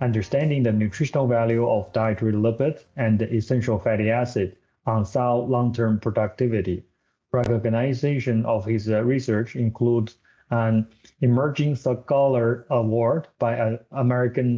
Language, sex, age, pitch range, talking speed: English, male, 30-49, 115-130 Hz, 110 wpm